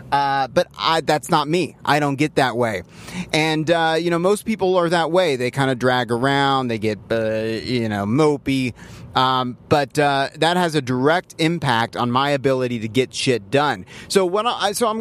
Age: 30-49